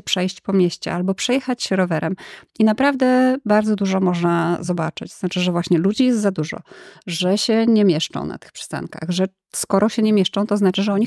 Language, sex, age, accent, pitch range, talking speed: Polish, female, 20-39, native, 175-215 Hz, 195 wpm